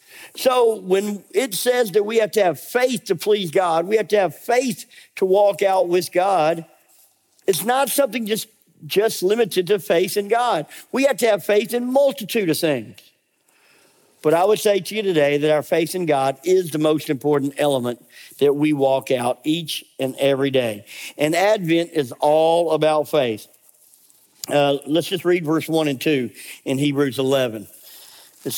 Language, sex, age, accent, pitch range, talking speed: English, male, 50-69, American, 150-210 Hz, 180 wpm